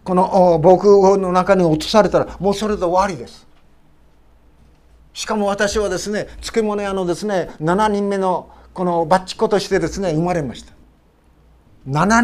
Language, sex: Japanese, male